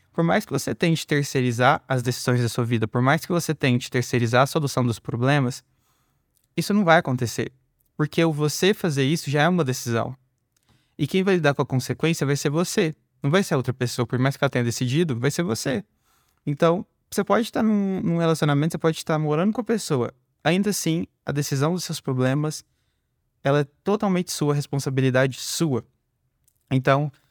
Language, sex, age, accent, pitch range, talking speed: Portuguese, male, 20-39, Brazilian, 125-160 Hz, 190 wpm